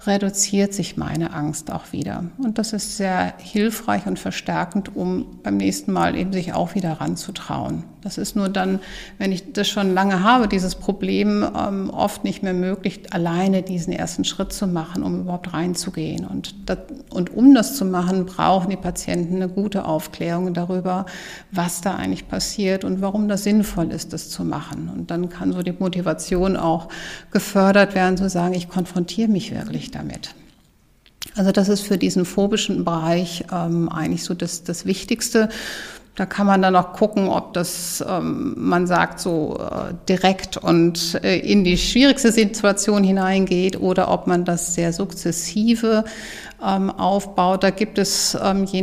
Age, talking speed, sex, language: 50-69, 155 wpm, female, German